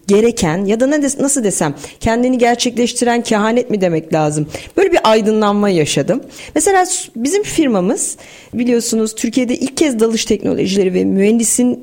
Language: Turkish